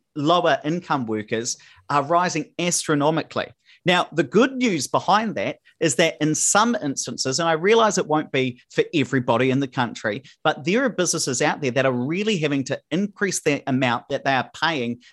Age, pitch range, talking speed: 40-59, 130-180 Hz, 185 wpm